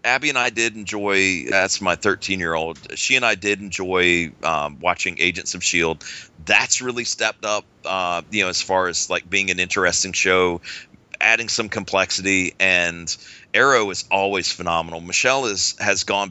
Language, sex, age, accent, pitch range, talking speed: English, male, 30-49, American, 90-105 Hz, 175 wpm